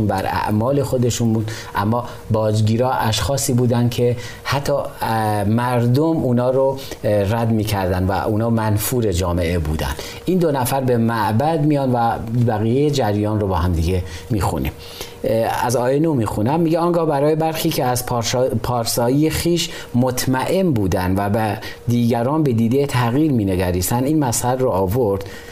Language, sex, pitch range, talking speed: Persian, male, 105-135 Hz, 140 wpm